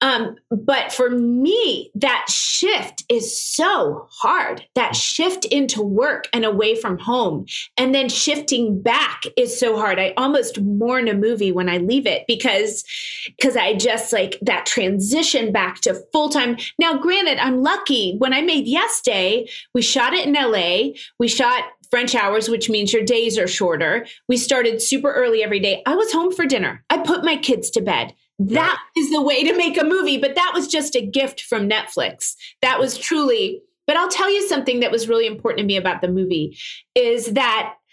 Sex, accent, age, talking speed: female, American, 30-49, 190 wpm